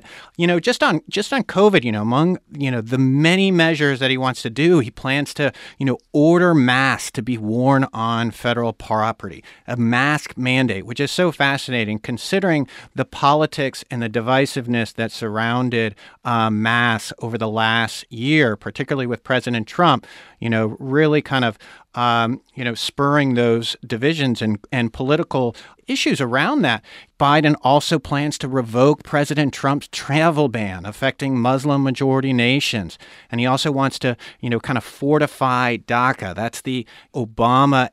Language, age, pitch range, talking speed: English, 50-69, 115-140 Hz, 160 wpm